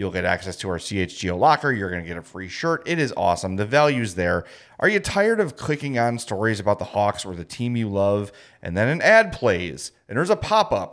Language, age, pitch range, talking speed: English, 30-49, 105-145 Hz, 240 wpm